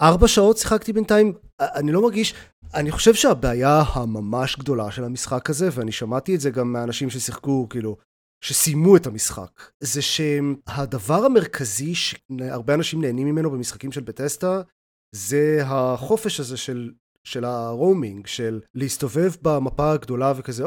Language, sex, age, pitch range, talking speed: Hebrew, male, 30-49, 115-150 Hz, 135 wpm